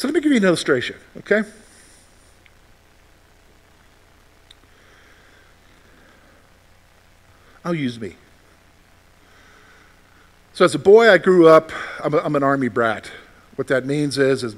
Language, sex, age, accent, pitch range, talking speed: English, male, 50-69, American, 105-165 Hz, 120 wpm